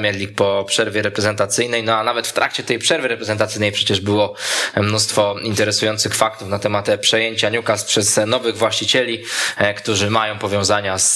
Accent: native